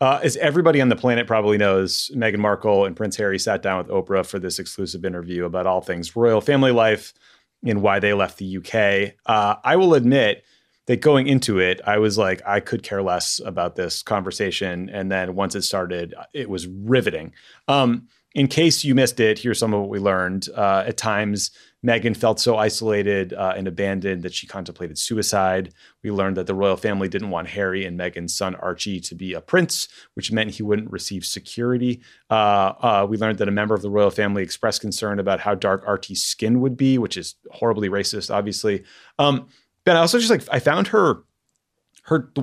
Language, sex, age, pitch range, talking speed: English, male, 30-49, 95-120 Hz, 205 wpm